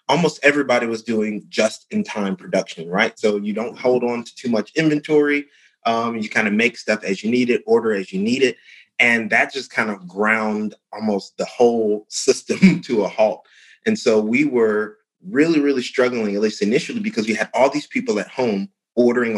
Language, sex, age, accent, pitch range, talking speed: English, male, 30-49, American, 105-160 Hz, 195 wpm